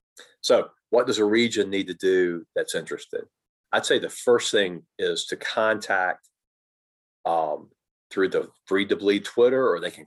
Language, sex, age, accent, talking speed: English, male, 40-59, American, 165 wpm